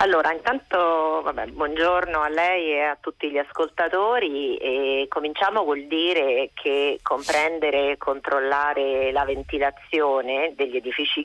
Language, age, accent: Italian, 40-59, native